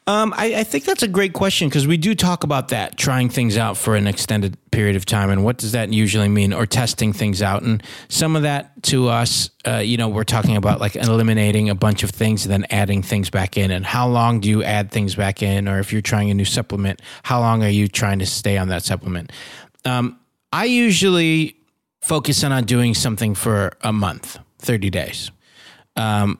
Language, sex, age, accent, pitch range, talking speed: English, male, 30-49, American, 100-125 Hz, 220 wpm